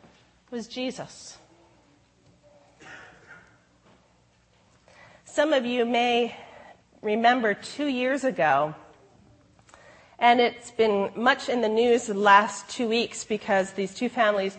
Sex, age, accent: female, 40-59, American